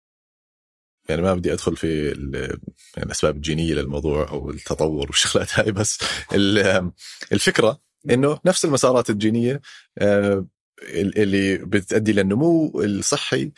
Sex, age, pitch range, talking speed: male, 30-49, 90-115 Hz, 100 wpm